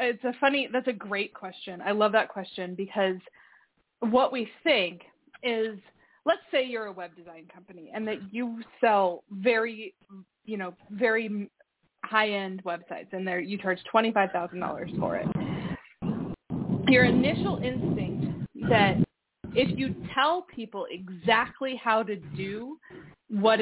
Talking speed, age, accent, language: 130 wpm, 20-39, American, English